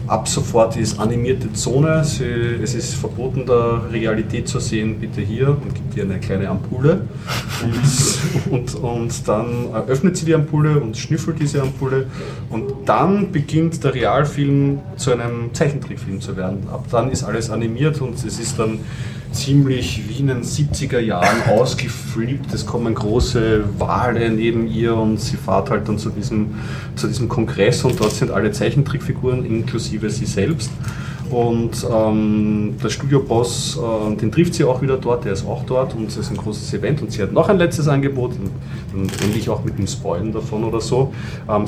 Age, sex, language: 30-49, male, German